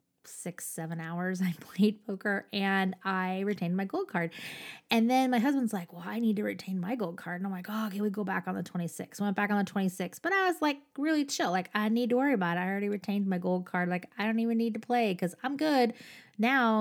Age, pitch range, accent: 20-39, 190-235 Hz, American